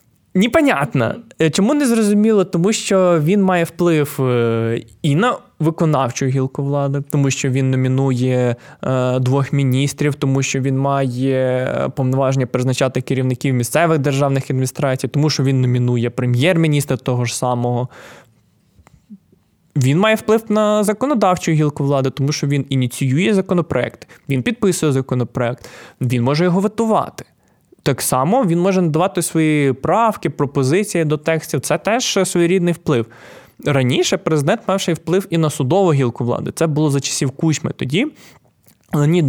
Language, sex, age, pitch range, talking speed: Ukrainian, male, 20-39, 130-175 Hz, 135 wpm